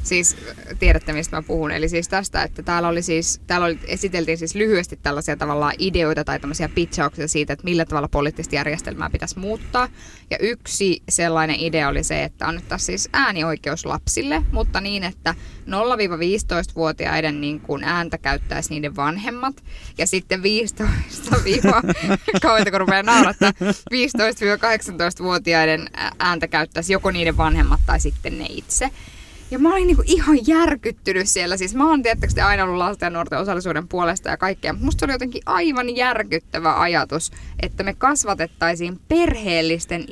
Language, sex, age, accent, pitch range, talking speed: Finnish, female, 10-29, native, 160-220 Hz, 140 wpm